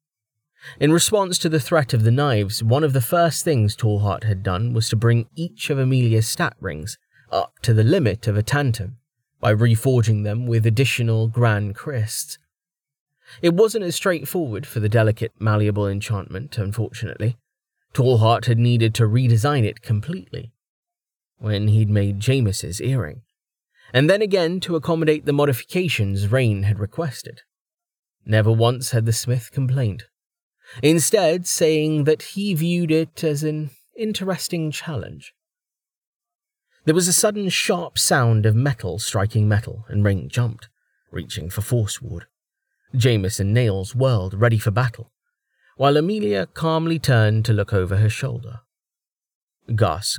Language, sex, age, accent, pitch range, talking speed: English, male, 20-39, British, 110-150 Hz, 140 wpm